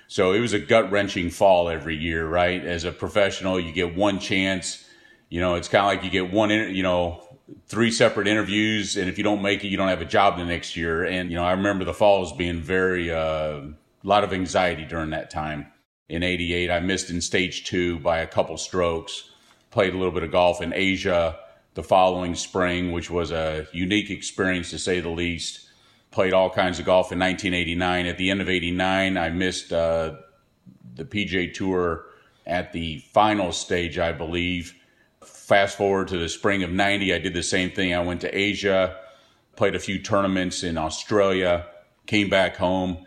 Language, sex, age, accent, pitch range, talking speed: English, male, 40-59, American, 85-95 Hz, 200 wpm